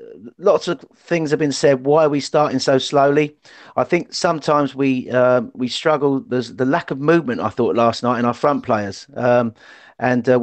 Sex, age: male, 40-59